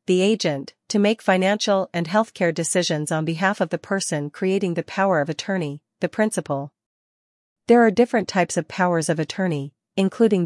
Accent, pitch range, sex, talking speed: American, 160-195 Hz, female, 165 wpm